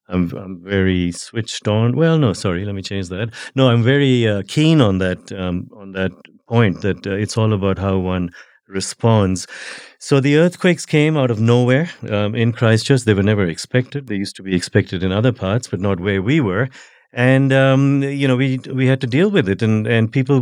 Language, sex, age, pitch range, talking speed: English, male, 50-69, 100-125 Hz, 210 wpm